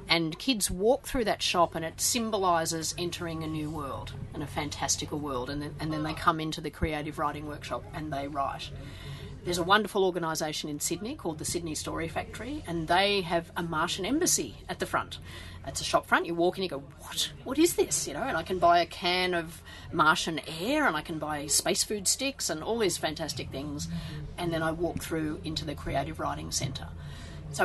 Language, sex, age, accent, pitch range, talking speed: English, female, 40-59, Australian, 150-180 Hz, 215 wpm